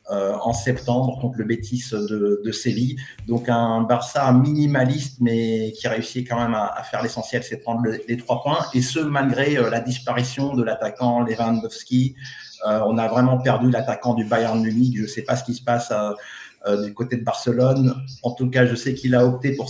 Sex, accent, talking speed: male, French, 210 wpm